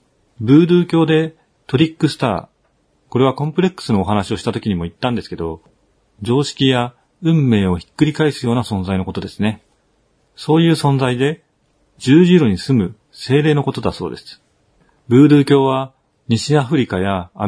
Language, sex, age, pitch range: Japanese, male, 40-59, 95-145 Hz